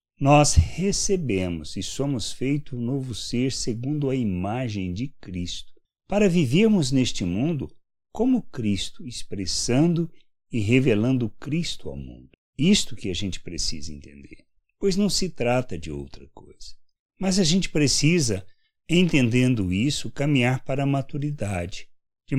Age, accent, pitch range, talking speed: 60-79, Brazilian, 95-145 Hz, 130 wpm